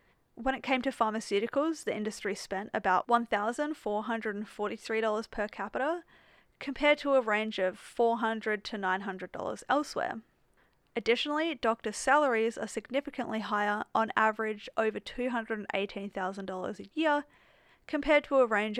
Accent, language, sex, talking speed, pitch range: Australian, English, female, 120 wpm, 200-260 Hz